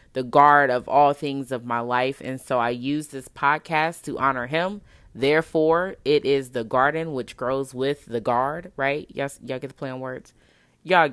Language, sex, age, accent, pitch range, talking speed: English, female, 20-39, American, 130-155 Hz, 200 wpm